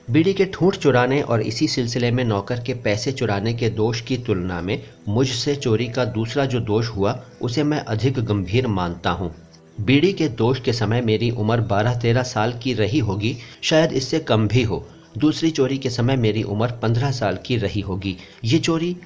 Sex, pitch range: male, 105-130 Hz